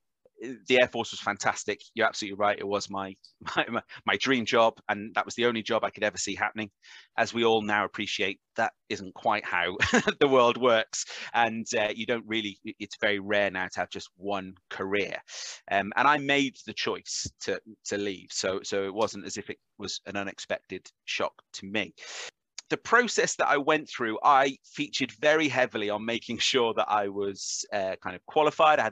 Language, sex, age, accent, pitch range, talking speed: English, male, 30-49, British, 100-125 Hz, 200 wpm